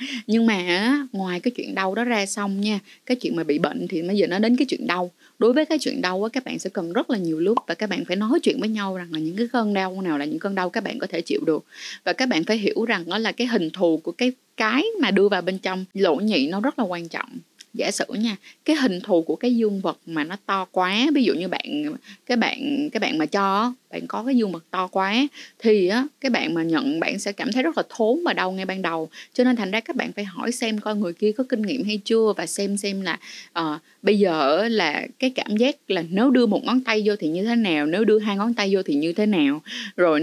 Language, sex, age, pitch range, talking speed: Vietnamese, female, 20-39, 190-255 Hz, 275 wpm